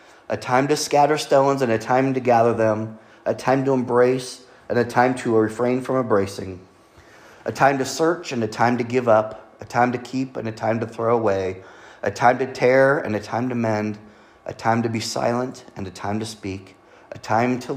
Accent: American